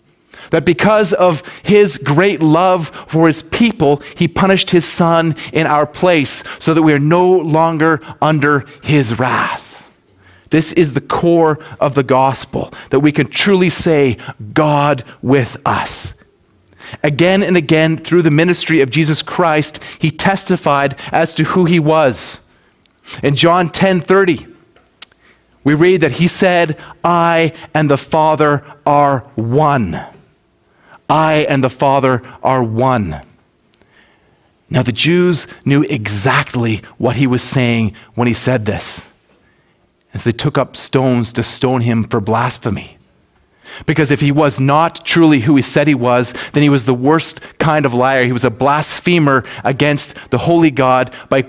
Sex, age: male, 30-49